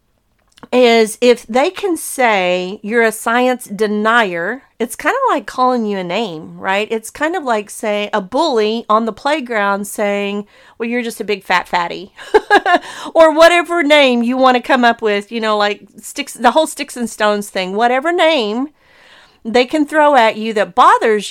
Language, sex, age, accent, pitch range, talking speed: English, female, 40-59, American, 205-275 Hz, 180 wpm